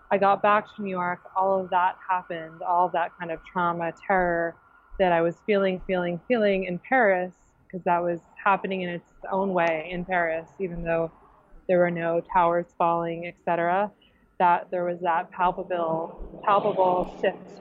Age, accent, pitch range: 20-39, American, 170-195 Hz